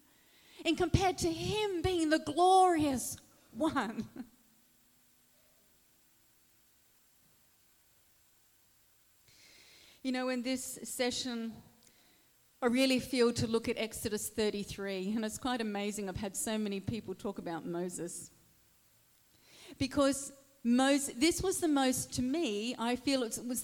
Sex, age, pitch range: female, 40-59, 220-280 Hz